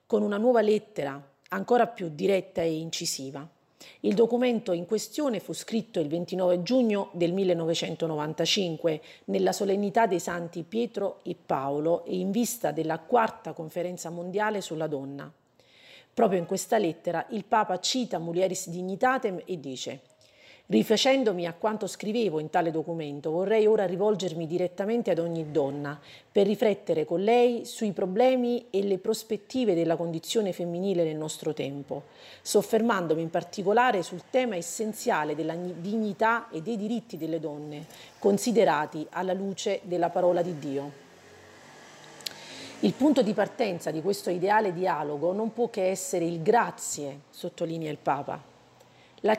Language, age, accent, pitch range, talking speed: Italian, 40-59, native, 165-215 Hz, 140 wpm